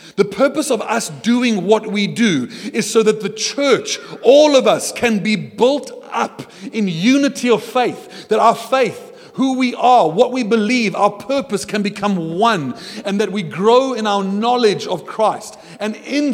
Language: English